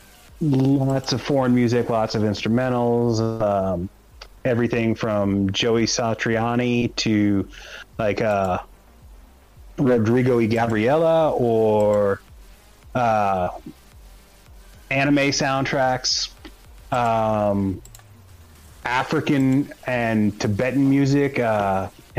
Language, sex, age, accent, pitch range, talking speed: English, male, 30-49, American, 100-135 Hz, 75 wpm